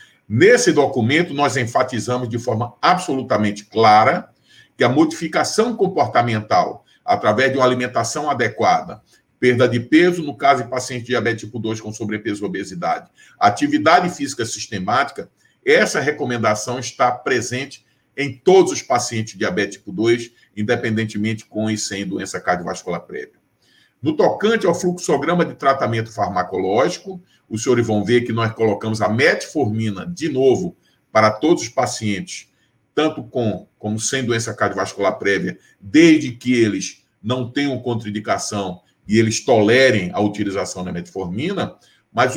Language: Portuguese